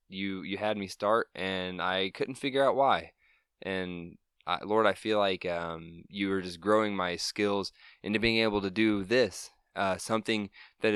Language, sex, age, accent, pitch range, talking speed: English, male, 20-39, American, 90-105 Hz, 175 wpm